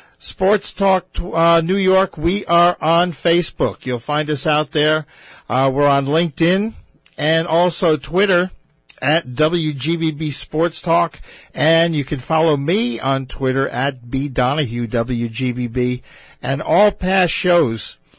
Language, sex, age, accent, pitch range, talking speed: English, male, 50-69, American, 135-170 Hz, 130 wpm